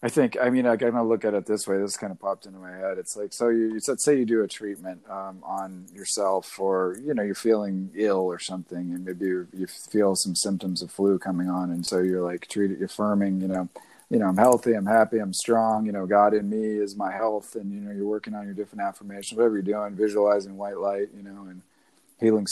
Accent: American